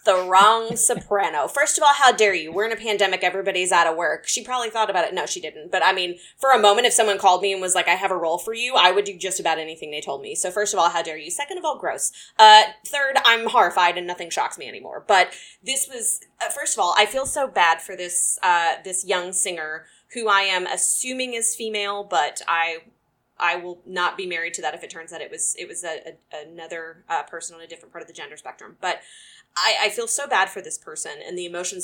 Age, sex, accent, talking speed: 20-39, female, American, 260 wpm